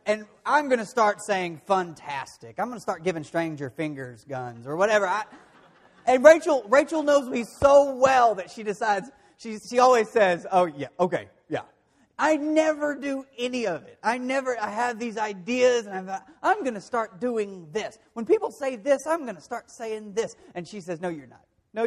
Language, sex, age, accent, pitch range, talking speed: English, male, 30-49, American, 175-265 Hz, 205 wpm